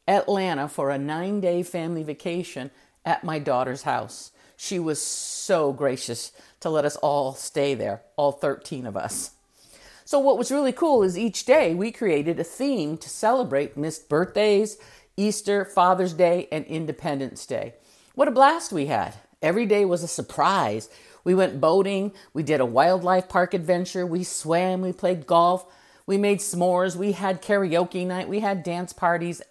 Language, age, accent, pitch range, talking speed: English, 50-69, American, 145-200 Hz, 165 wpm